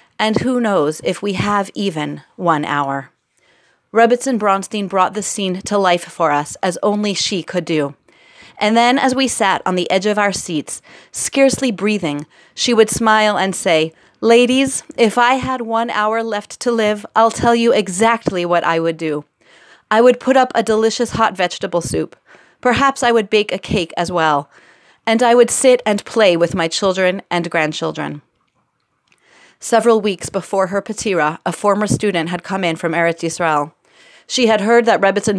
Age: 30-49